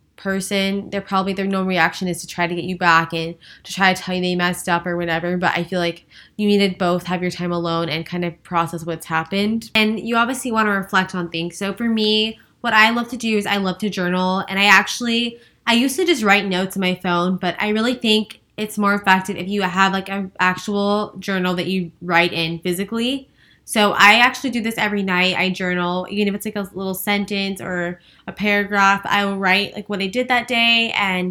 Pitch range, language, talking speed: 175-210 Hz, English, 235 wpm